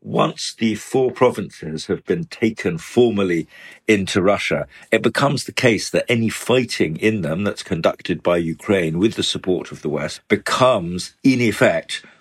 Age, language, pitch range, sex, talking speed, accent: 50-69, English, 90-115 Hz, male, 155 wpm, British